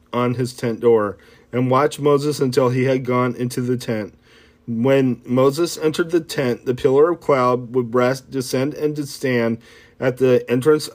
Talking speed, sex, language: 170 wpm, male, English